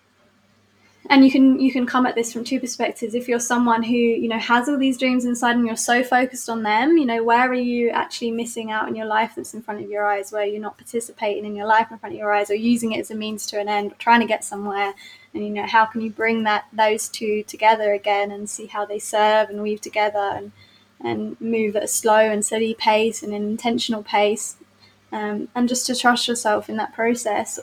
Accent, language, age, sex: British, English, 20-39, female